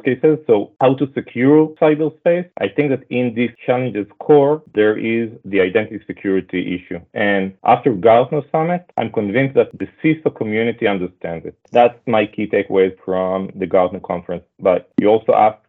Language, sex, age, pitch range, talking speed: English, male, 40-59, 100-135 Hz, 165 wpm